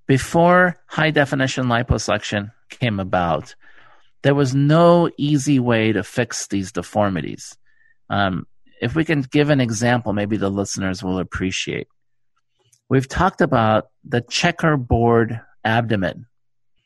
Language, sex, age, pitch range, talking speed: English, male, 50-69, 110-145 Hz, 115 wpm